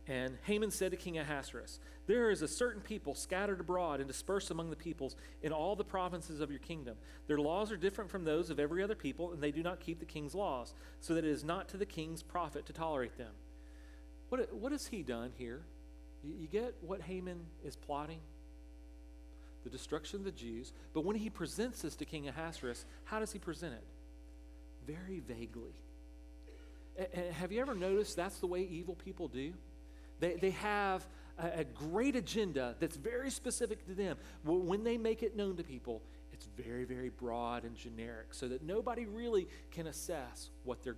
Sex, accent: male, American